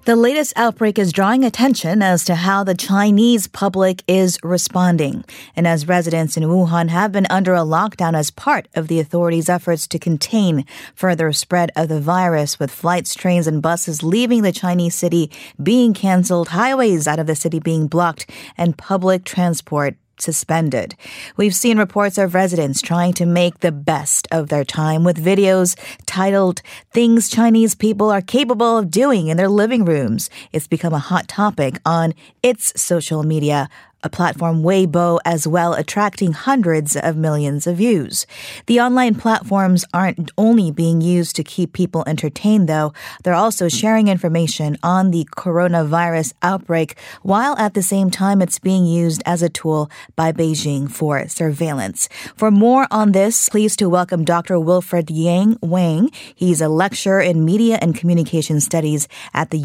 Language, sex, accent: Korean, female, American